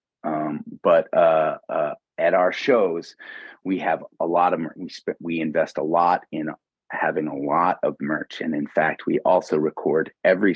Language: English